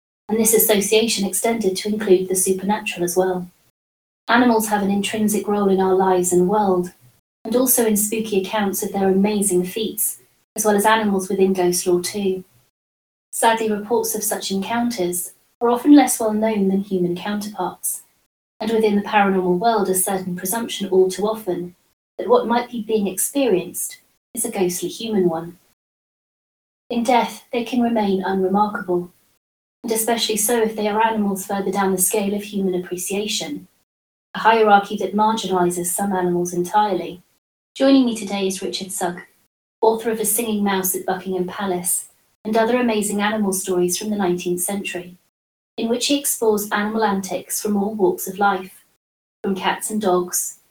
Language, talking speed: English, 160 wpm